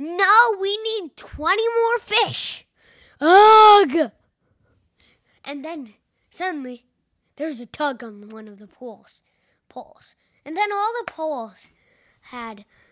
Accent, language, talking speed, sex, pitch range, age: American, English, 115 wpm, female, 265-435 Hz, 10-29